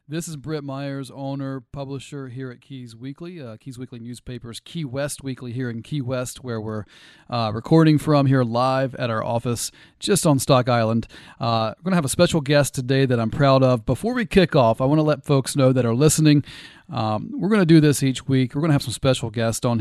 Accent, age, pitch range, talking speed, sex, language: American, 40-59, 130-155 Hz, 225 wpm, male, English